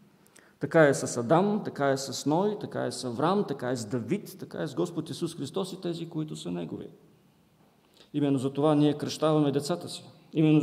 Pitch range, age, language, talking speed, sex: 125-165 Hz, 40-59, English, 200 wpm, male